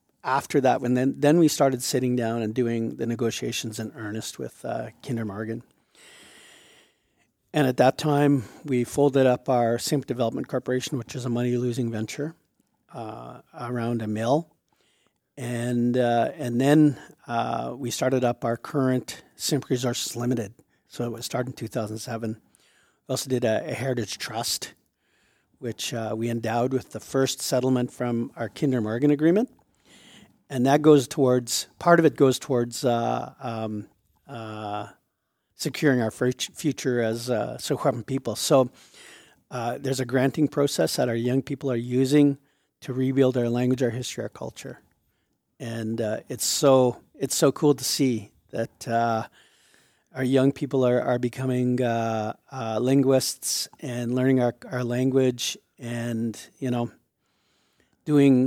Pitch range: 115-135 Hz